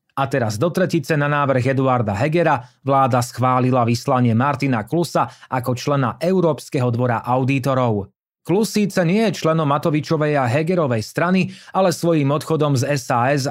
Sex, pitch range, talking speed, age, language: male, 125-160 Hz, 140 wpm, 30-49, Slovak